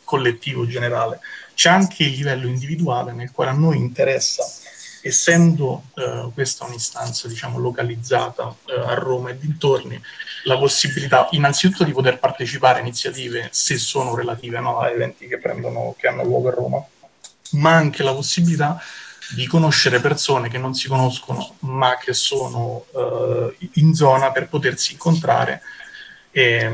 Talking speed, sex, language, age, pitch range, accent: 145 wpm, male, Italian, 30-49, 125-150 Hz, native